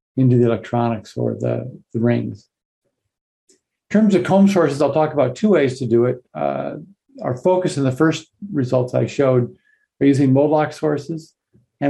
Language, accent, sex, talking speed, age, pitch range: English, American, male, 175 wpm, 50-69, 120-145 Hz